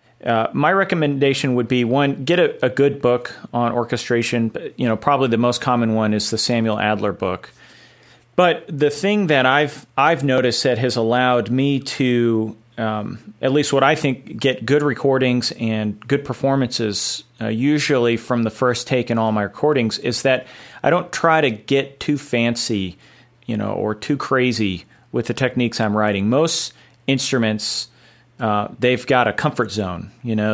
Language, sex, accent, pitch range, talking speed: English, male, American, 110-135 Hz, 175 wpm